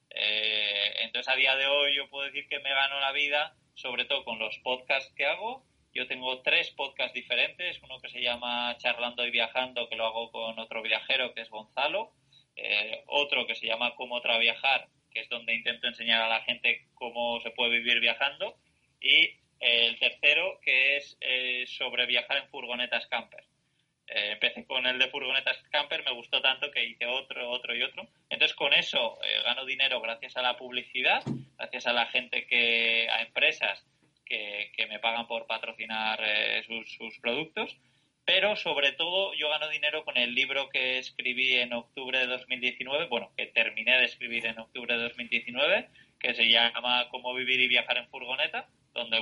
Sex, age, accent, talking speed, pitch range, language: male, 20-39, Spanish, 185 wpm, 115-130 Hz, Spanish